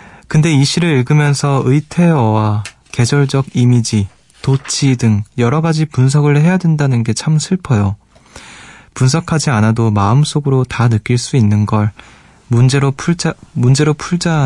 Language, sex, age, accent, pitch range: Korean, male, 20-39, native, 115-150 Hz